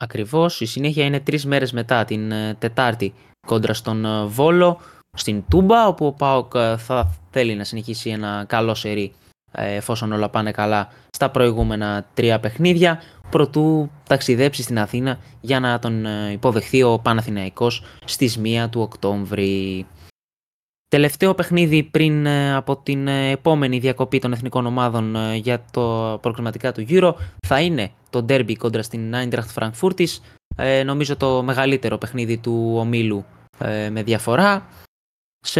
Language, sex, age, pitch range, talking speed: Greek, male, 20-39, 110-145 Hz, 135 wpm